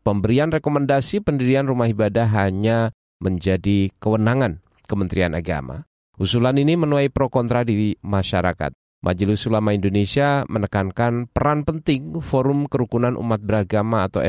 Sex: male